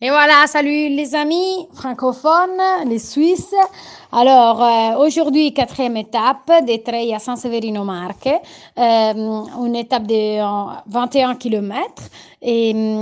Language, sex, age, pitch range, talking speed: Italian, female, 30-49, 215-265 Hz, 115 wpm